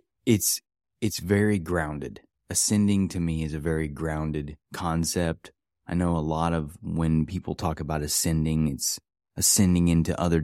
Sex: male